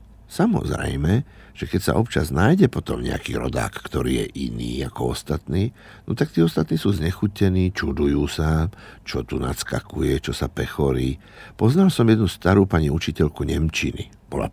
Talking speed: 150 wpm